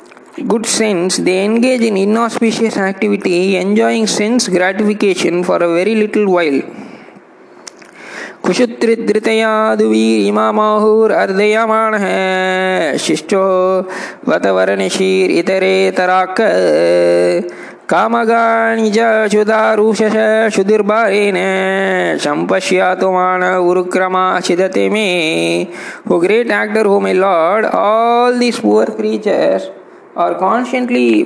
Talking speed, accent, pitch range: 70 wpm, native, 180-220 Hz